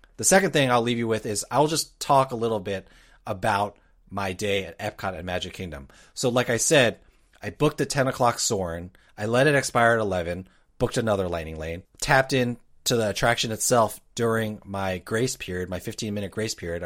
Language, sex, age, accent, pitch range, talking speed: English, male, 30-49, American, 95-130 Hz, 200 wpm